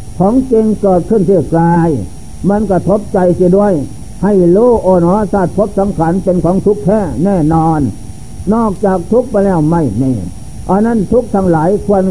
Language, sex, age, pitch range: Thai, male, 60-79, 170-205 Hz